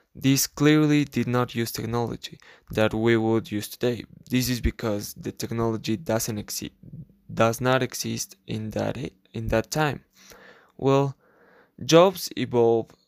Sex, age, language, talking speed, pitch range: male, 20-39, English, 135 wpm, 110-130 Hz